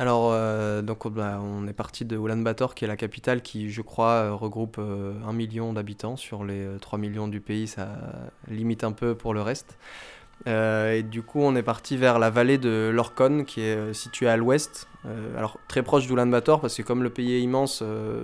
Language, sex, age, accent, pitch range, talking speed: French, male, 20-39, French, 110-120 Hz, 205 wpm